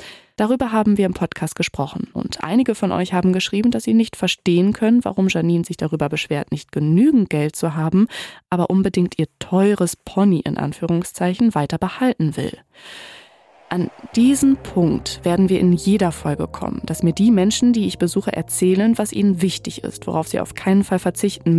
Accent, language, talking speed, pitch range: German, German, 180 wpm, 160-205 Hz